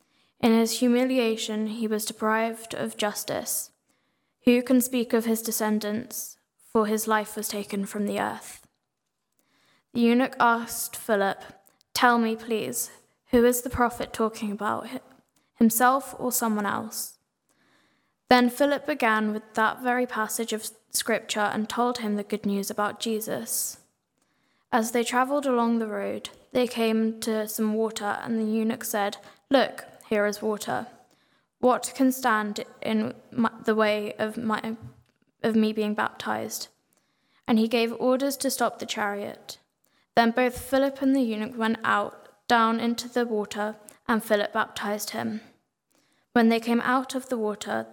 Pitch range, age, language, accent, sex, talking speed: 215-245 Hz, 10-29, English, British, female, 150 wpm